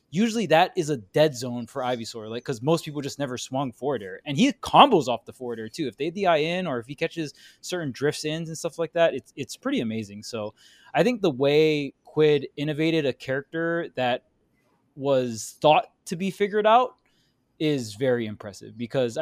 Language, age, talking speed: English, 20-39, 200 wpm